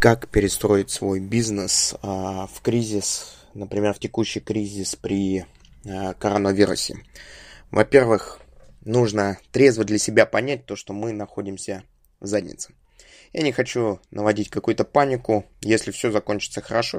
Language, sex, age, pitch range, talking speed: Russian, male, 20-39, 100-115 Hz, 115 wpm